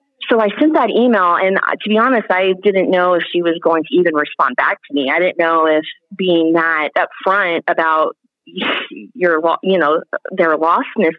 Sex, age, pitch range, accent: female, 30-49, 165-195 Hz, American